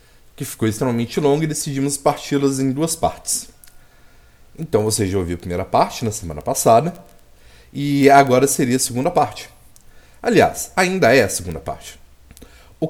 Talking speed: 155 wpm